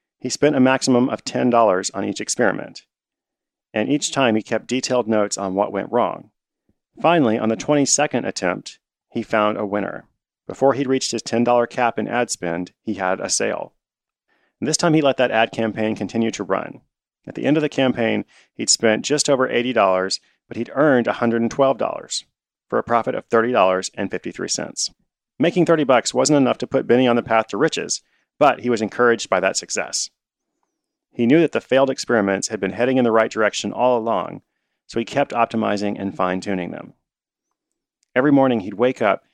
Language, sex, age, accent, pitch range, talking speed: English, male, 40-59, American, 105-130 Hz, 185 wpm